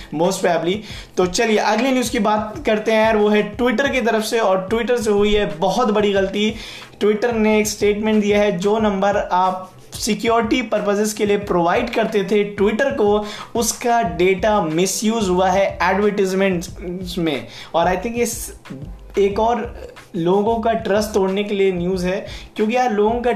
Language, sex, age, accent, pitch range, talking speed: Hindi, male, 20-39, native, 180-215 Hz, 165 wpm